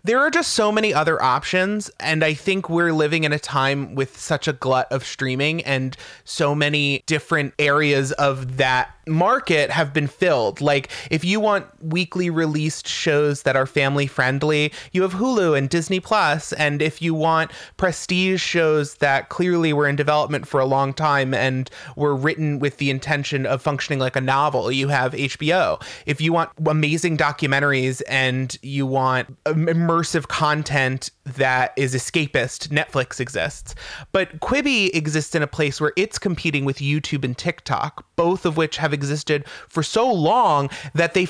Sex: male